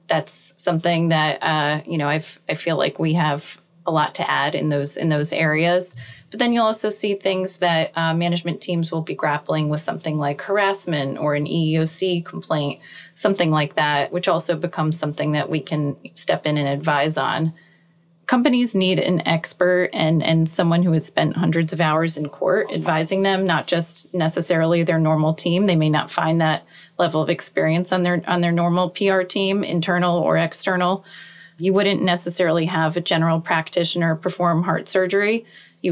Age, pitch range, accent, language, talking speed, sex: 20-39, 160-185 Hz, American, English, 180 wpm, female